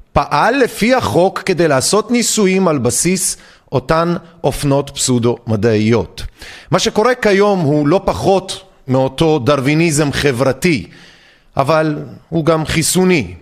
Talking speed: 110 wpm